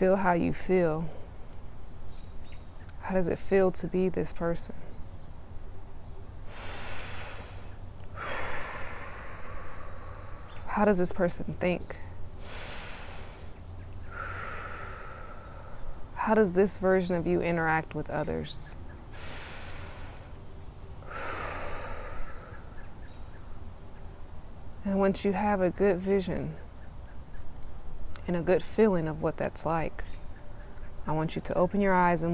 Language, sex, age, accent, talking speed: English, female, 20-39, American, 85 wpm